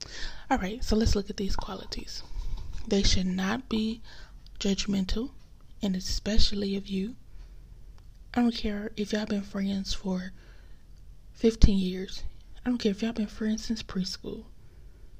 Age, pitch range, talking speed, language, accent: 20-39, 195-220 Hz, 145 wpm, English, American